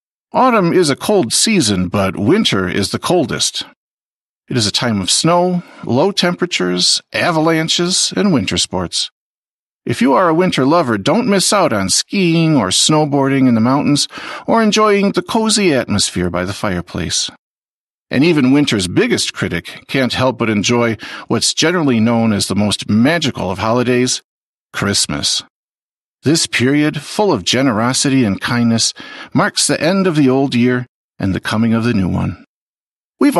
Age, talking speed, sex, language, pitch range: 50-69, 155 wpm, male, Slovak, 110-165 Hz